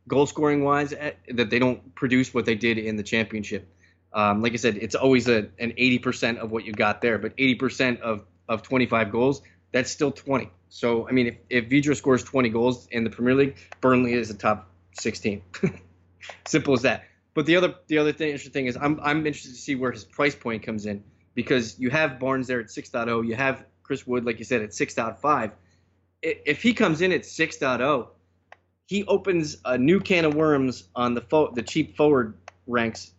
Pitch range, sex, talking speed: 105-140 Hz, male, 200 wpm